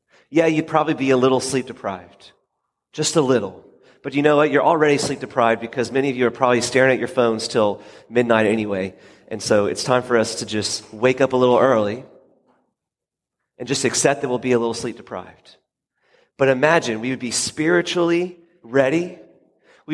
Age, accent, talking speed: 30-49, American, 190 wpm